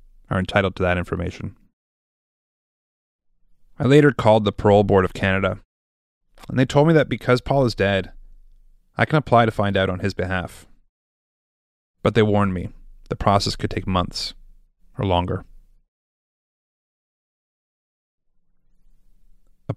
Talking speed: 130 wpm